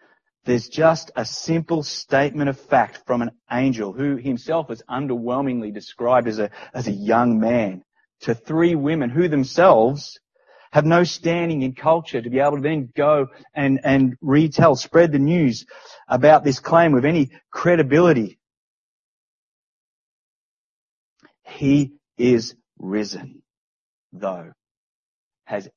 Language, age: English, 30-49